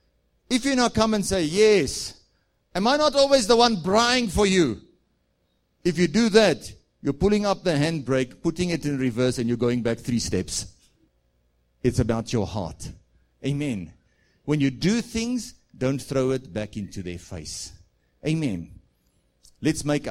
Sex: male